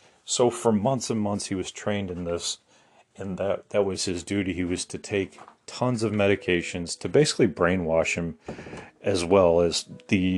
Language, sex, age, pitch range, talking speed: English, male, 40-59, 90-110 Hz, 180 wpm